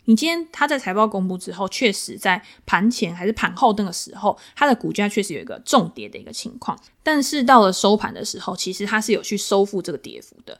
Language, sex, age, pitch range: Chinese, female, 20-39, 190-235 Hz